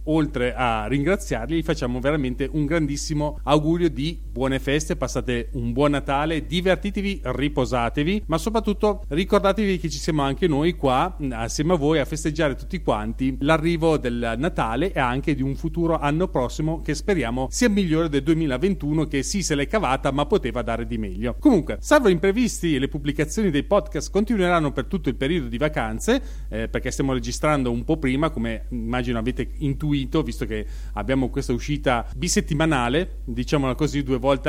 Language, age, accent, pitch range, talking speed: Italian, 40-59, native, 135-170 Hz, 165 wpm